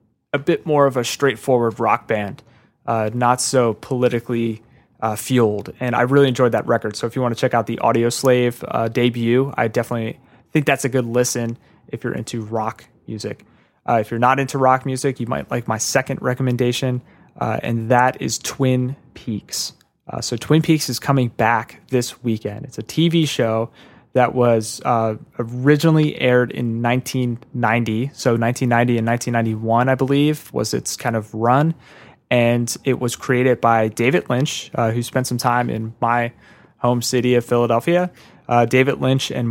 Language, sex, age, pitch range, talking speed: English, male, 20-39, 115-135 Hz, 175 wpm